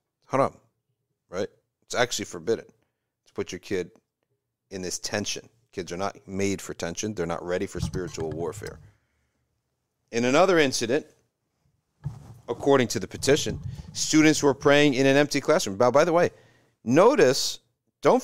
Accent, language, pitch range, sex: American, English, 110-145 Hz, male